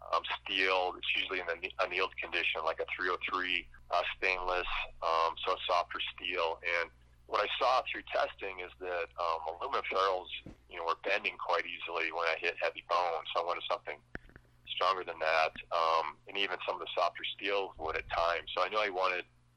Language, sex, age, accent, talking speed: English, male, 30-49, American, 195 wpm